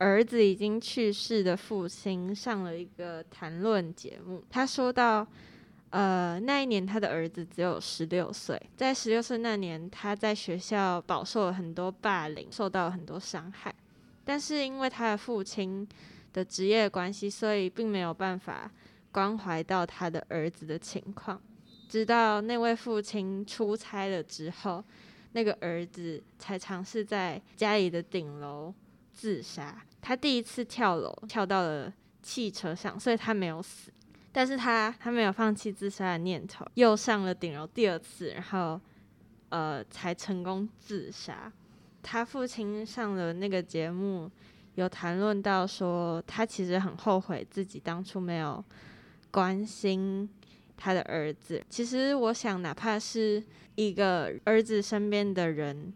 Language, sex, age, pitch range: Chinese, female, 20-39, 180-220 Hz